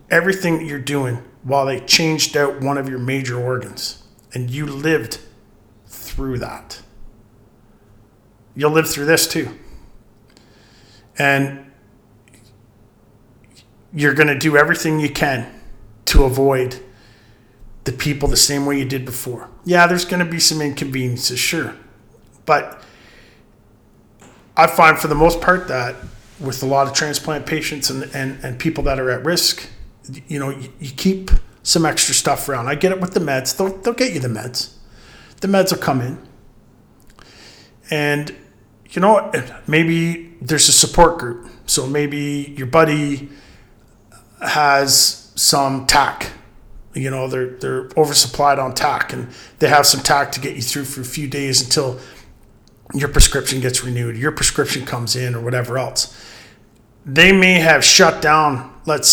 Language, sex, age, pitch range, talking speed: English, male, 40-59, 125-155 Hz, 150 wpm